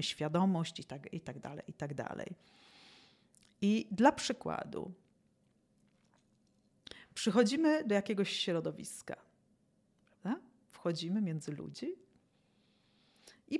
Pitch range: 170-240 Hz